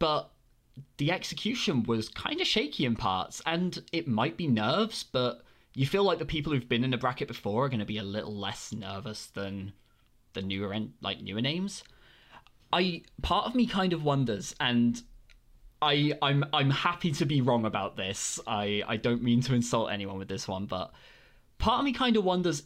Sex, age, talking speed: male, 20-39, 195 wpm